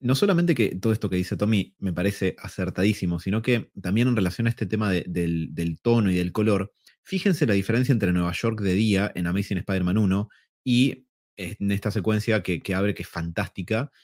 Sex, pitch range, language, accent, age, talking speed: male, 90-115 Hz, Spanish, Argentinian, 20-39, 205 wpm